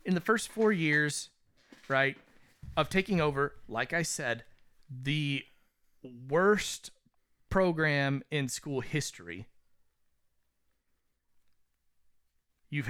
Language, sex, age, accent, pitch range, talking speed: English, male, 30-49, American, 125-160 Hz, 90 wpm